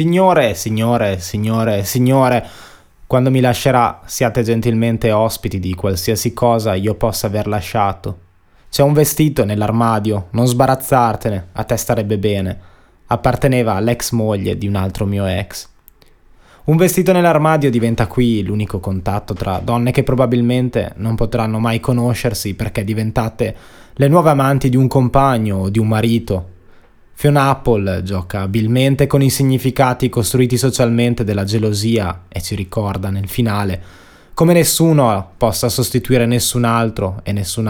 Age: 20-39